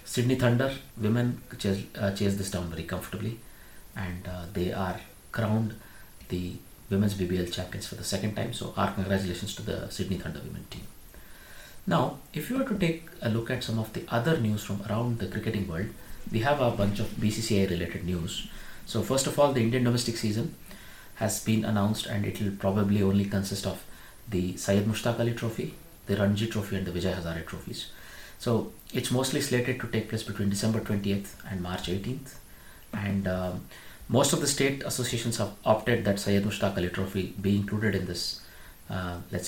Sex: male